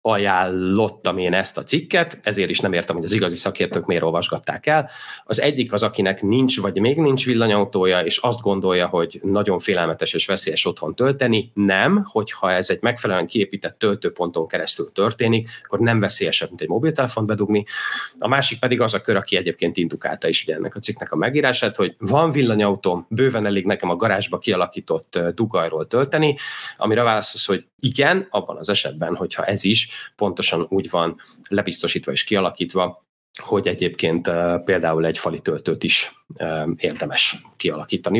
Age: 30-49